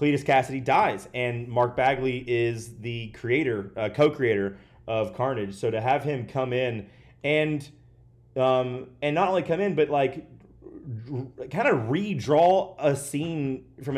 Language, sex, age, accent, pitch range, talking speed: English, male, 30-49, American, 110-135 Hz, 145 wpm